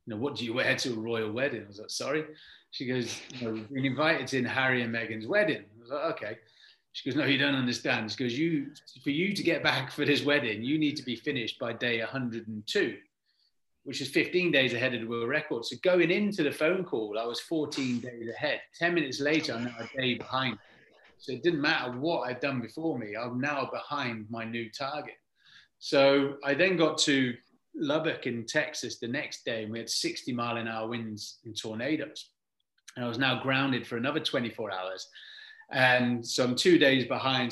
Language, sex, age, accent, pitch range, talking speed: English, male, 30-49, British, 115-145 Hz, 215 wpm